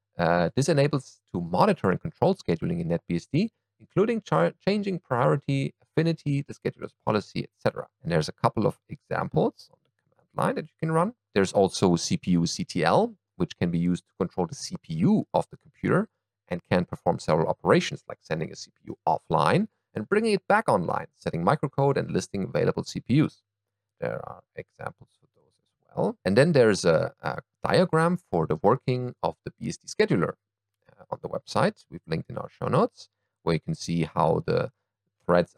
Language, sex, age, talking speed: English, male, 40-59, 170 wpm